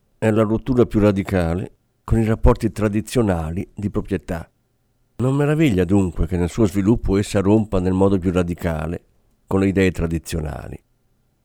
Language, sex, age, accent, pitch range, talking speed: Italian, male, 50-69, native, 95-120 Hz, 140 wpm